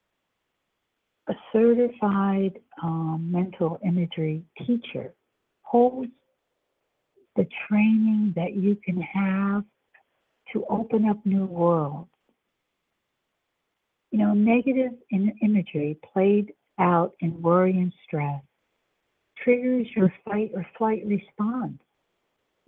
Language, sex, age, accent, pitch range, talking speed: English, female, 60-79, American, 170-210 Hz, 90 wpm